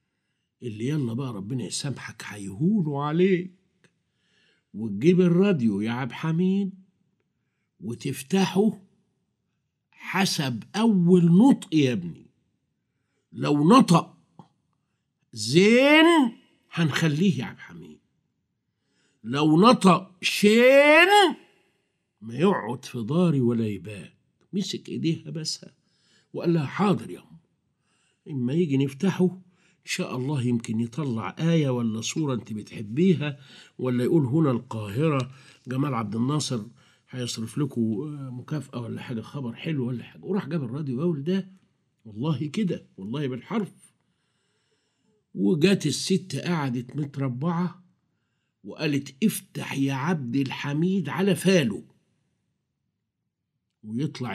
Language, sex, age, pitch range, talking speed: Arabic, male, 50-69, 125-180 Hz, 100 wpm